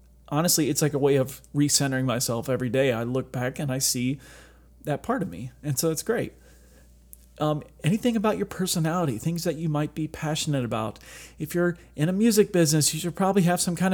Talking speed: 205 wpm